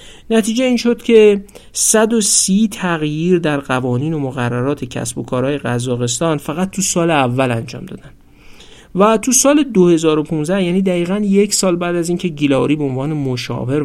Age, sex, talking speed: 50-69, male, 155 wpm